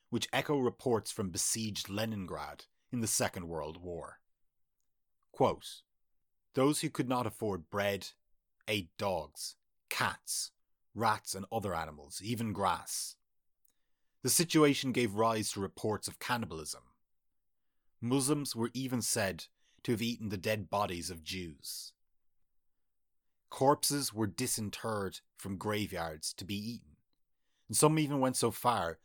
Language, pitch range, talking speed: English, 95-125 Hz, 125 wpm